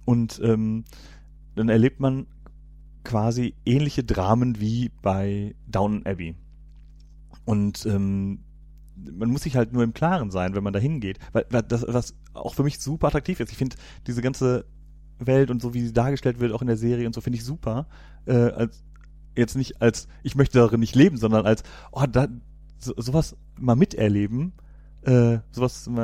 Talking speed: 175 wpm